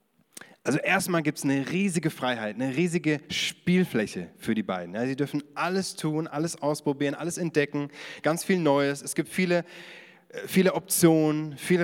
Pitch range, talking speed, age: 130-165 Hz, 150 wpm, 30-49